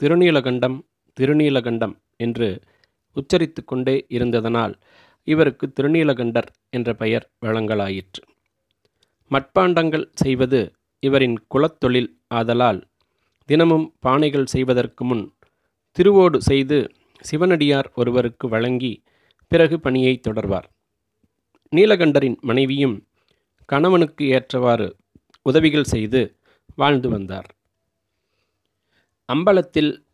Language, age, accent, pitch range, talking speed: Tamil, 30-49, native, 115-145 Hz, 75 wpm